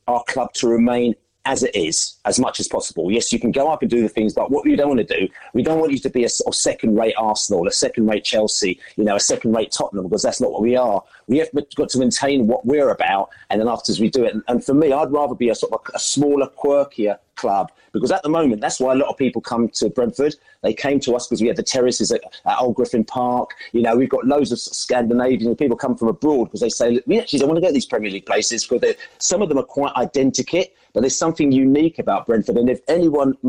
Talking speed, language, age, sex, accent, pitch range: 255 wpm, English, 40-59, male, British, 115-145 Hz